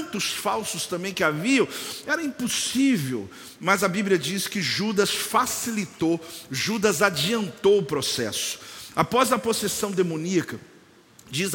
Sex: male